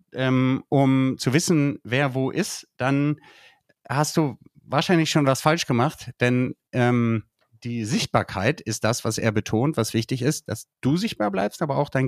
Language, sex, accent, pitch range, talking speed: German, male, German, 110-140 Hz, 165 wpm